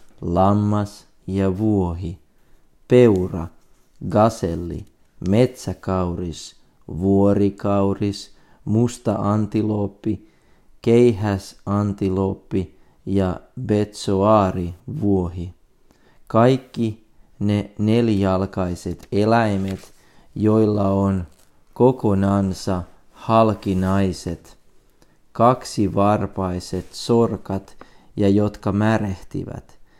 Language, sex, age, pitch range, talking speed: Finnish, male, 40-59, 95-110 Hz, 55 wpm